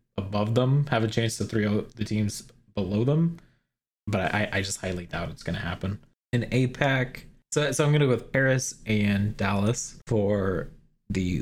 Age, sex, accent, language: 20-39, male, American, English